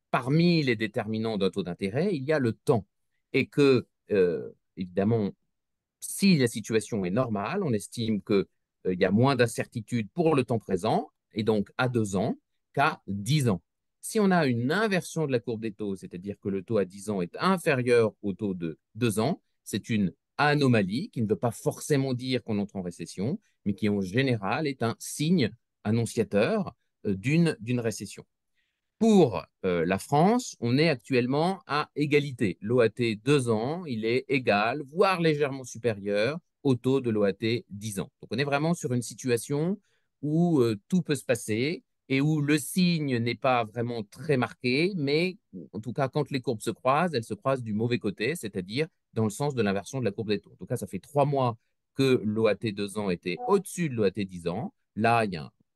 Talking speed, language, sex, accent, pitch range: 195 wpm, French, male, French, 105-145 Hz